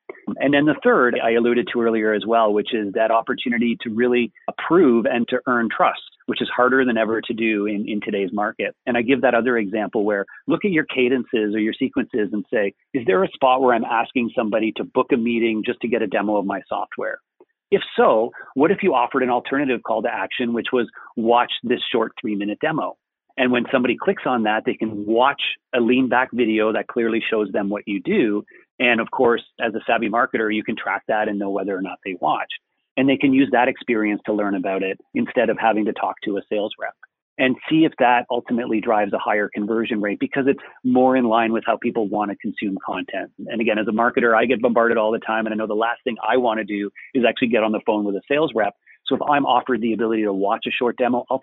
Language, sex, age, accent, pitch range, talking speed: English, male, 40-59, American, 105-125 Hz, 245 wpm